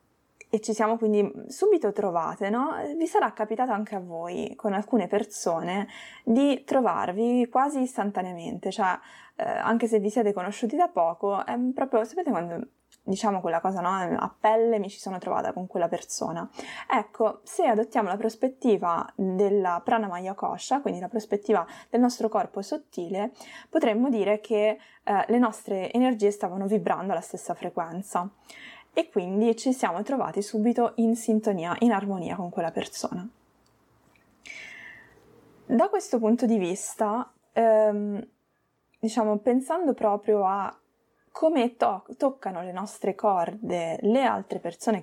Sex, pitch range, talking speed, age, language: female, 195-235 Hz, 140 wpm, 20-39, Italian